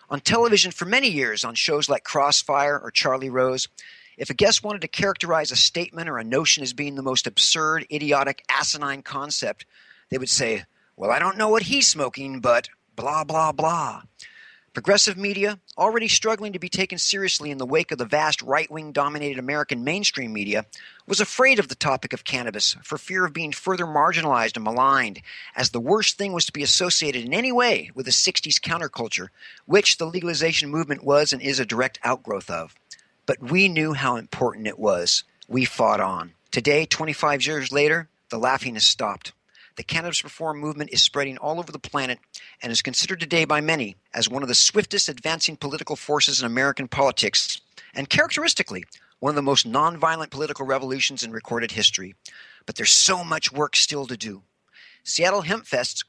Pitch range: 135-180 Hz